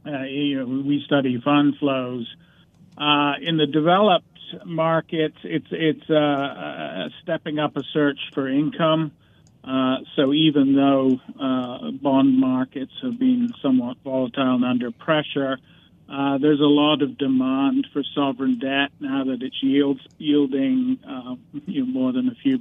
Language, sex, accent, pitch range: English, male, American, 130-150 Hz